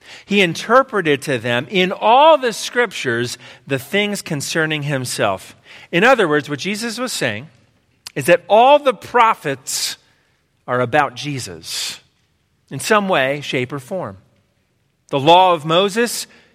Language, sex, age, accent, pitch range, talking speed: English, male, 40-59, American, 135-225 Hz, 135 wpm